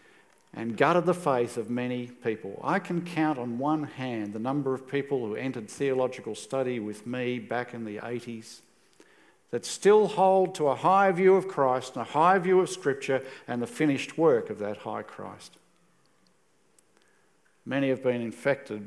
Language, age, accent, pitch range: English, 50-69, Australian, 120-155 Hz